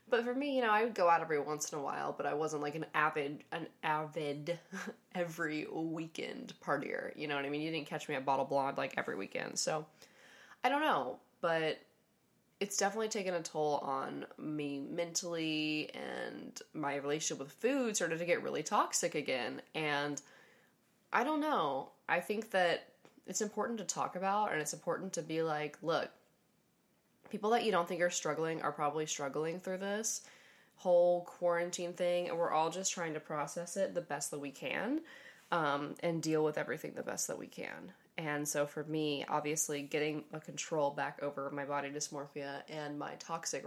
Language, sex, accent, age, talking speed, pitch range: English, female, American, 20-39, 190 wpm, 150-185 Hz